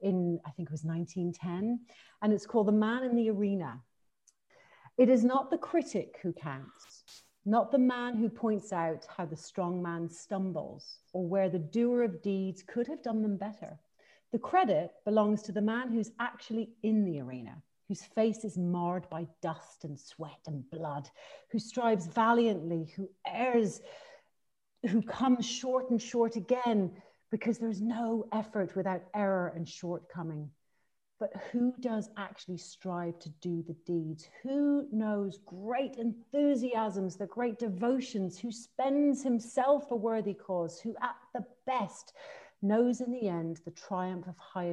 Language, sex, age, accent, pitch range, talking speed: English, female, 40-59, British, 170-235 Hz, 155 wpm